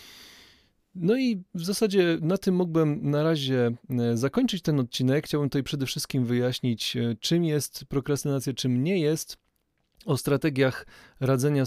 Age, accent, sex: 30-49, native, male